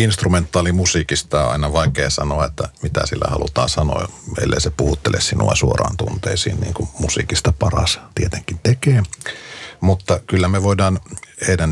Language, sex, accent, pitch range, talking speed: Finnish, male, native, 75-95 Hz, 140 wpm